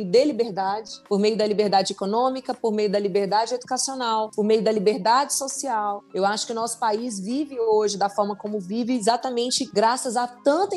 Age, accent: 20-39, Brazilian